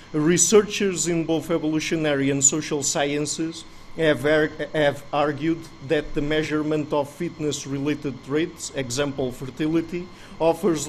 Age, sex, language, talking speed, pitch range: 50-69, male, English, 105 wpm, 145-160 Hz